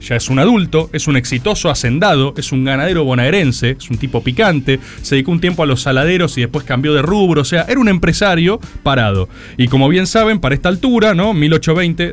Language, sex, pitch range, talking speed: Spanish, male, 130-190 Hz, 215 wpm